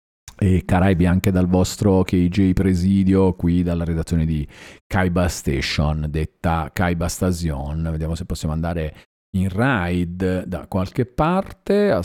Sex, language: male, Italian